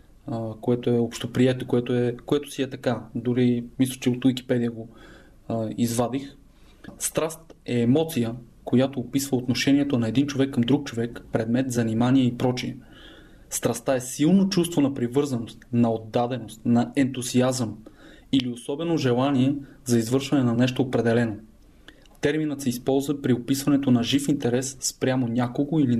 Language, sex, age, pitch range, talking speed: Bulgarian, male, 20-39, 120-135 Hz, 140 wpm